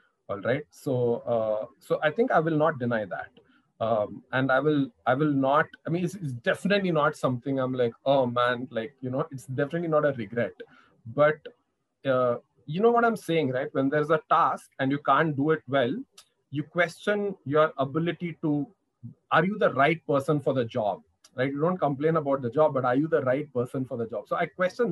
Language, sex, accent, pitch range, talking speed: English, male, Indian, 135-170 Hz, 210 wpm